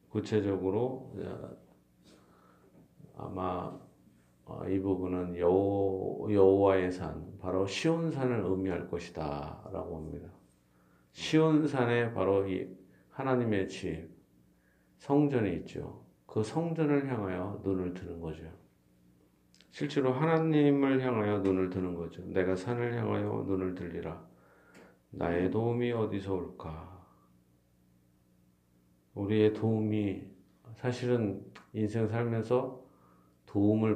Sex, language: male, Korean